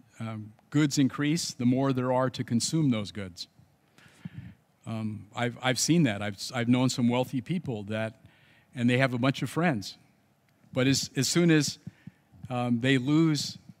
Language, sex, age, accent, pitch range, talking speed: English, male, 50-69, American, 120-145 Hz, 165 wpm